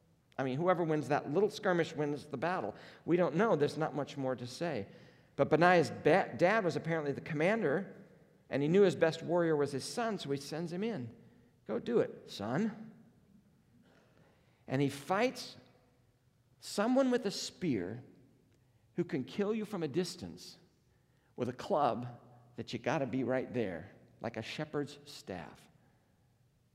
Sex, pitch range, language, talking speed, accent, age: male, 125-165 Hz, English, 165 wpm, American, 50-69